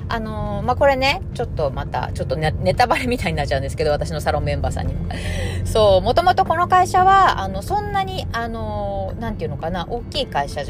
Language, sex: Japanese, female